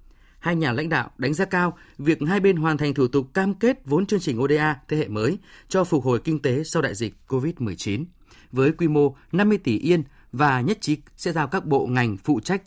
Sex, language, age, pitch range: male, Vietnamese, 20-39, 125-175 Hz